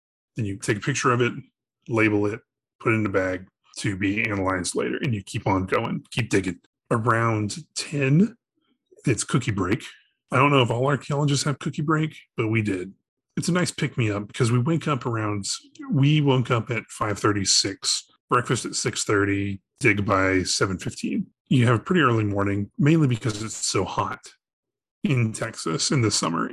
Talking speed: 180 wpm